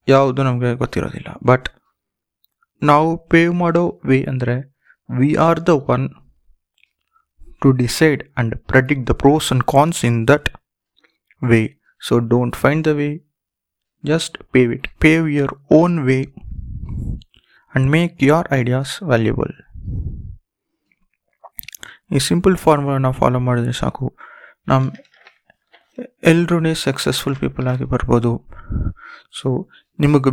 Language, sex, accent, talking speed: Kannada, male, native, 115 wpm